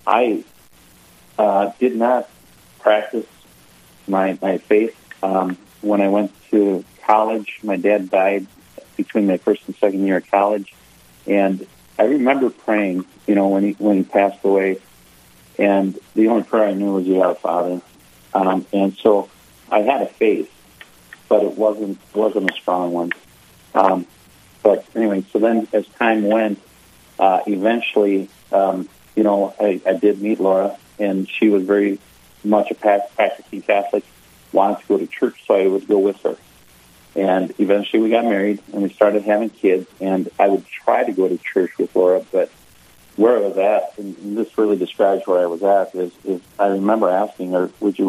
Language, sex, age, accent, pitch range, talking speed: English, male, 40-59, American, 90-105 Hz, 175 wpm